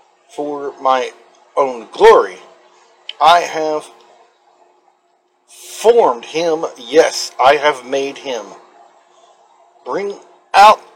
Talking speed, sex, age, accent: 80 wpm, male, 50-69, American